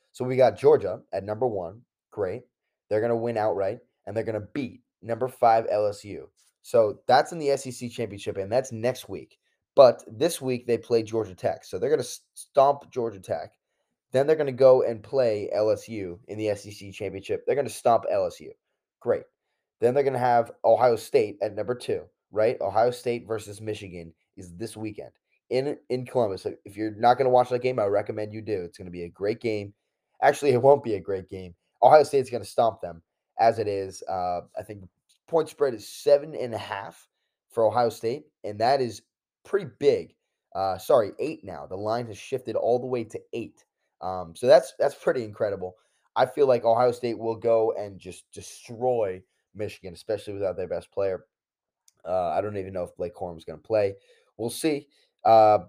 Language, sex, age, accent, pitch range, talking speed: English, male, 10-29, American, 100-140 Hz, 200 wpm